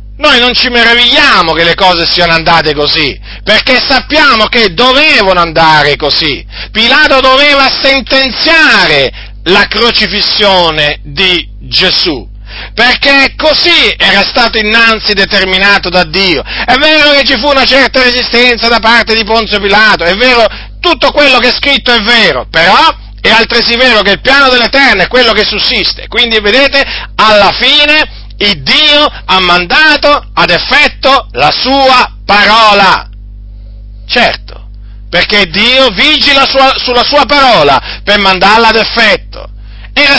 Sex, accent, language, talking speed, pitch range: male, native, Italian, 135 wpm, 165-265 Hz